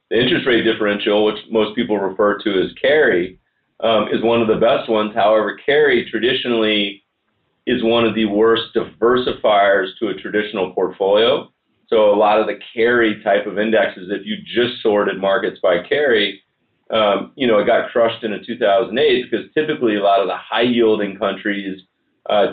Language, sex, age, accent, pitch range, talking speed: English, male, 40-59, American, 105-120 Hz, 170 wpm